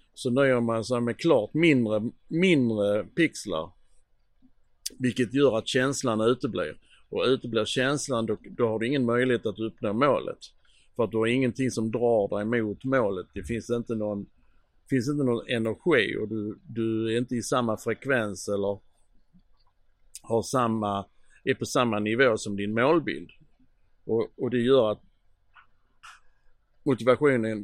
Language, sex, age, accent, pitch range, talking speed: Swedish, male, 60-79, Norwegian, 100-125 Hz, 150 wpm